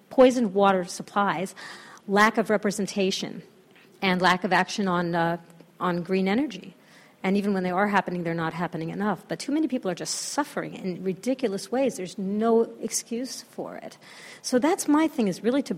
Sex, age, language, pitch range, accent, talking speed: female, 40-59, English, 195-245 Hz, American, 180 wpm